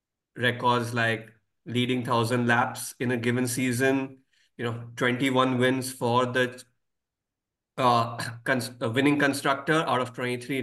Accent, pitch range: Indian, 120-135 Hz